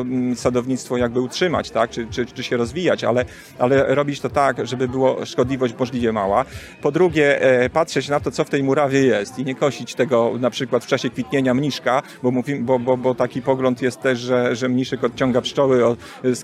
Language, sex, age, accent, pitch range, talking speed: Polish, male, 40-59, native, 125-150 Hz, 195 wpm